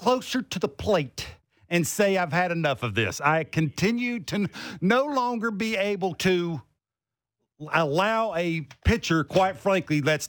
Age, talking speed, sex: 50-69, 155 wpm, male